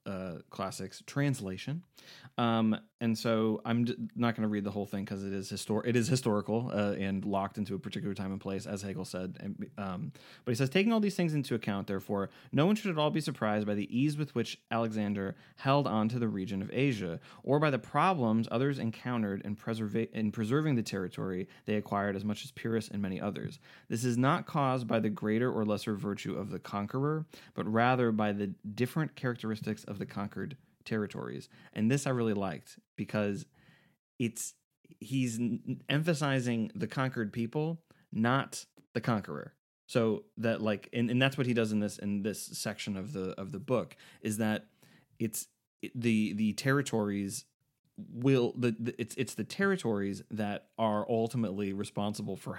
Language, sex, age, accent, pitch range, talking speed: English, male, 20-39, American, 105-130 Hz, 185 wpm